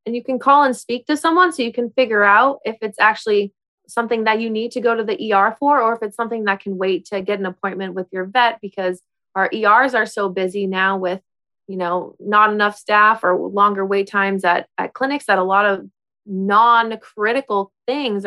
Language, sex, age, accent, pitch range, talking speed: English, female, 20-39, American, 190-225 Hz, 215 wpm